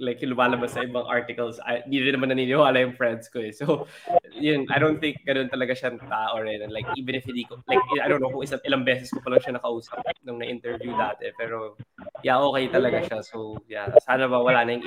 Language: Filipino